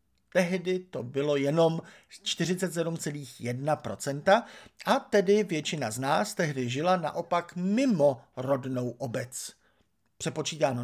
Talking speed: 95 wpm